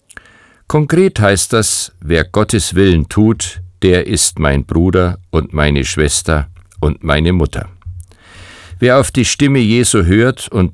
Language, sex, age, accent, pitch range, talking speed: German, male, 50-69, German, 85-105 Hz, 135 wpm